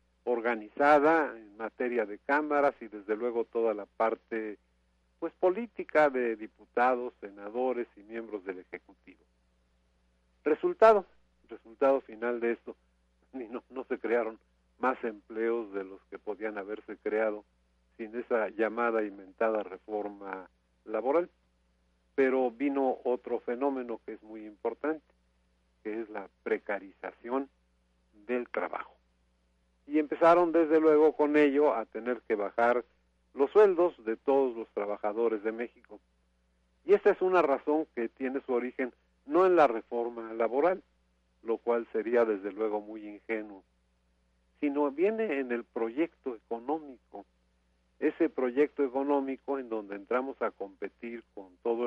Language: Spanish